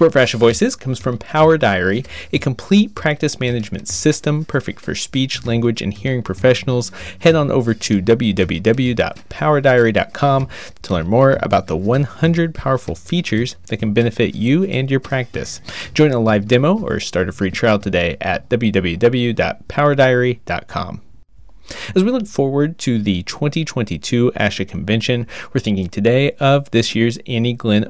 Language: English